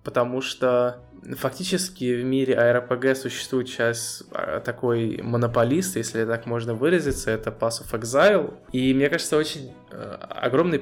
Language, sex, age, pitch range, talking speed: Russian, male, 20-39, 115-140 Hz, 130 wpm